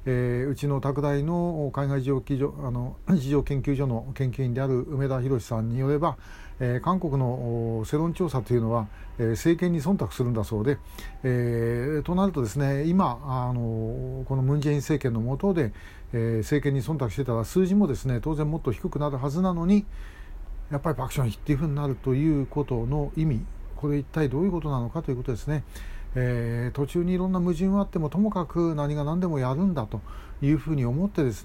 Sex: male